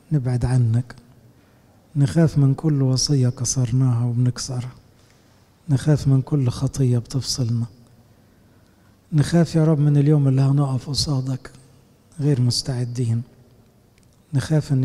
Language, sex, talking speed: English, male, 100 wpm